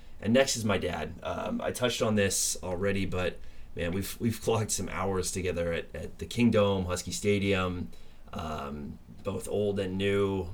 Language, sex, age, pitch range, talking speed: English, male, 20-39, 85-100 Hz, 170 wpm